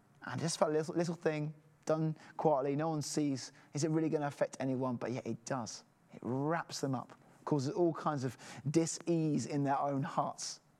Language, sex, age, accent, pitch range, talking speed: English, male, 20-39, British, 140-165 Hz, 200 wpm